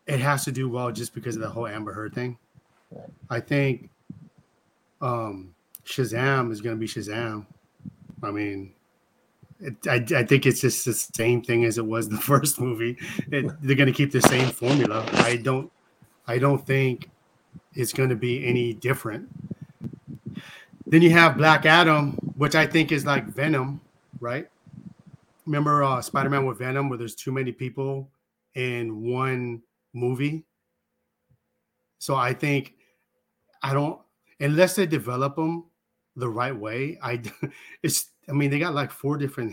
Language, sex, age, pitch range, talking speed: English, male, 30-49, 120-145 Hz, 160 wpm